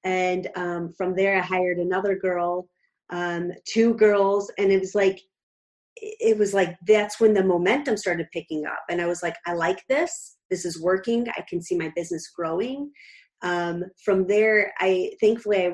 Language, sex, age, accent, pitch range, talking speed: English, female, 30-49, American, 175-215 Hz, 175 wpm